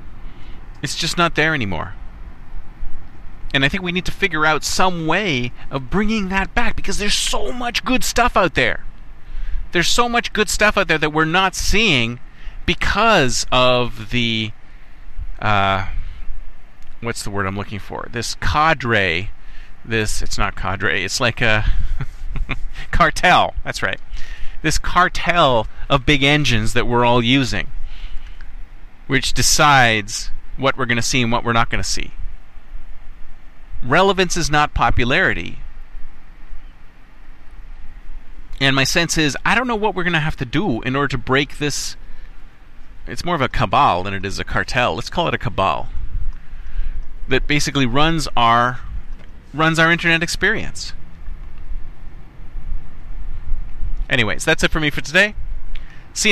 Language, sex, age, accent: English, male, 40-59, American